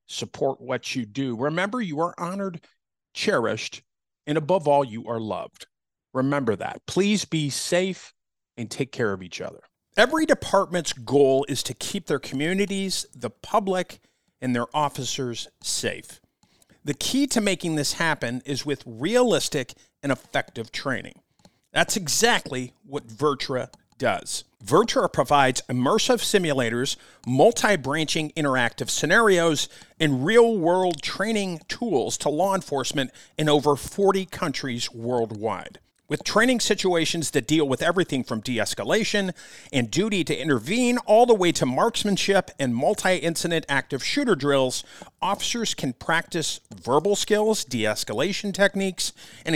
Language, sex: English, male